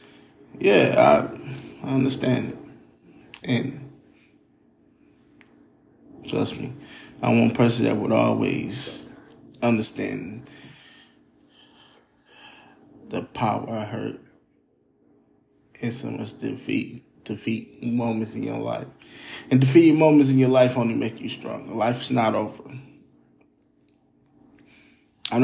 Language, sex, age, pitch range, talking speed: English, male, 20-39, 115-135 Hz, 100 wpm